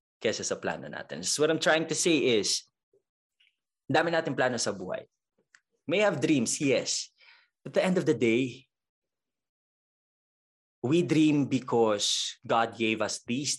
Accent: Filipino